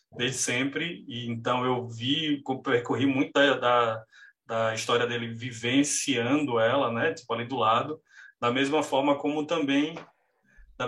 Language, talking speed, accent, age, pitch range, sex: Portuguese, 145 wpm, Brazilian, 20-39, 125-155 Hz, male